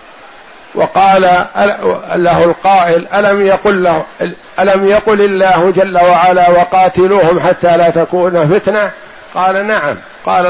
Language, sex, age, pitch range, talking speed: Arabic, male, 60-79, 155-190 Hz, 90 wpm